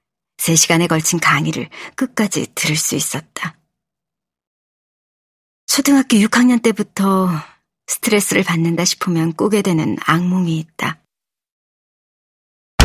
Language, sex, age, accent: Korean, male, 40-59, native